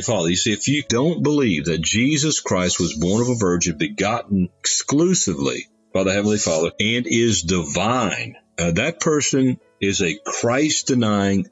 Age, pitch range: 50-69, 95-125 Hz